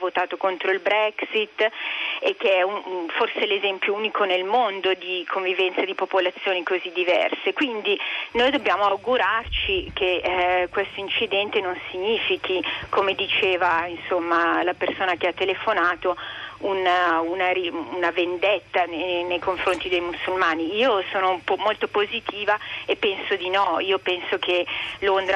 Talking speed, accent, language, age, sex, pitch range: 135 wpm, native, Italian, 40-59, female, 180-205 Hz